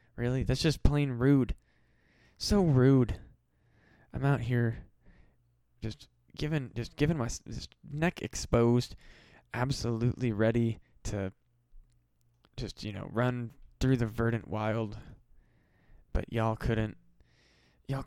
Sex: male